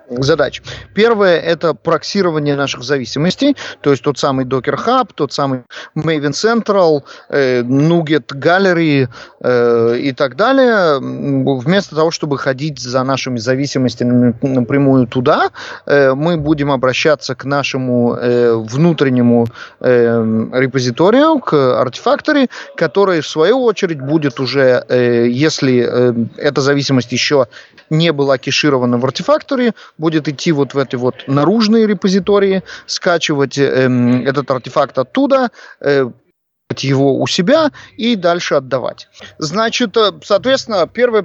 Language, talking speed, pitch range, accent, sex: Russian, 115 wpm, 130-195 Hz, native, male